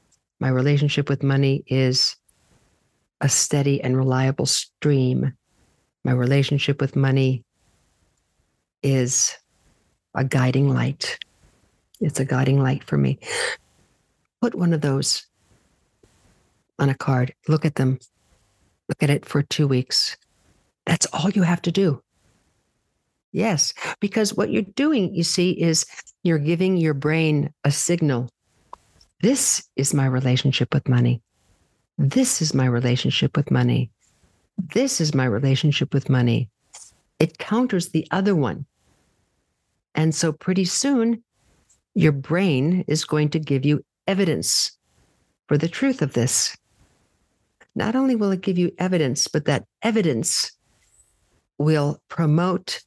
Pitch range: 130-170 Hz